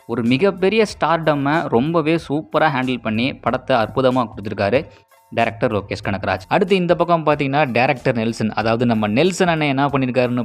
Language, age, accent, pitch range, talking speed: Tamil, 20-39, native, 115-150 Hz, 145 wpm